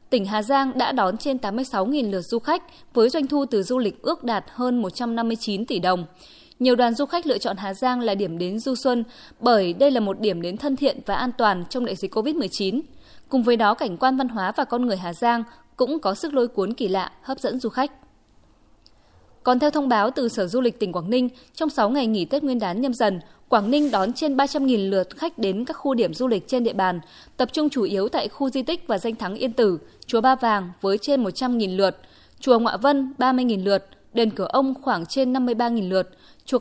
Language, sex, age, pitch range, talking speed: Vietnamese, female, 20-39, 195-265 Hz, 235 wpm